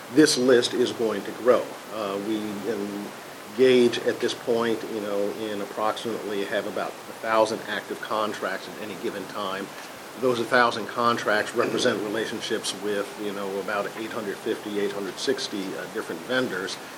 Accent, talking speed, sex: American, 145 wpm, male